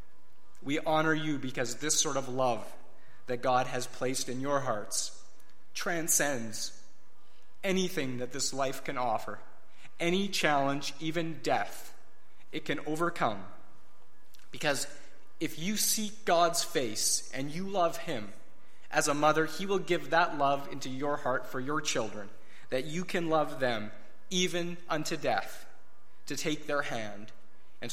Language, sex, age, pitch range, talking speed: English, male, 30-49, 130-165 Hz, 140 wpm